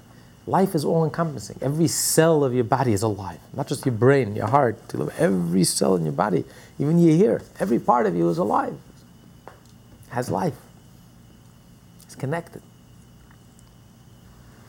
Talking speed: 140 wpm